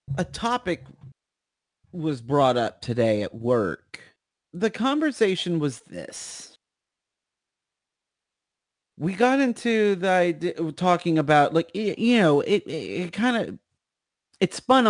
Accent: American